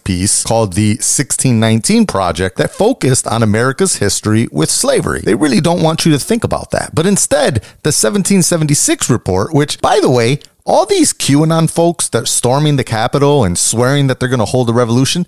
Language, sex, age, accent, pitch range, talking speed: English, male, 30-49, American, 100-165 Hz, 190 wpm